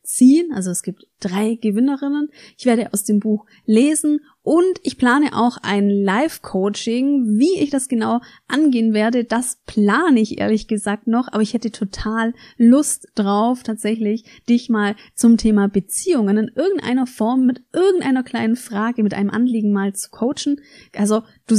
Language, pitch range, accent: German, 210-250 Hz, German